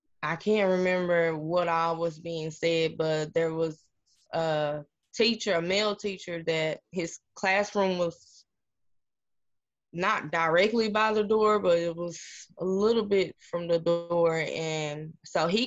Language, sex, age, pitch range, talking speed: English, female, 10-29, 160-185 Hz, 140 wpm